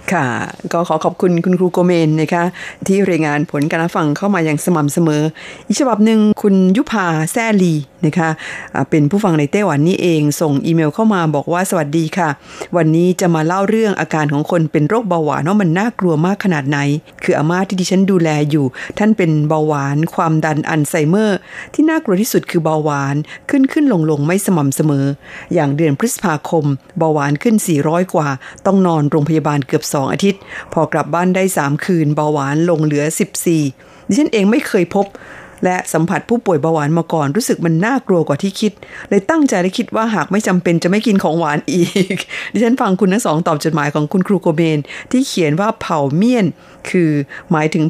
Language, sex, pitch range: Thai, female, 155-200 Hz